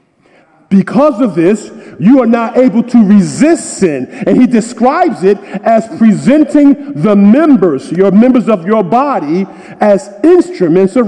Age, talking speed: 50-69, 140 wpm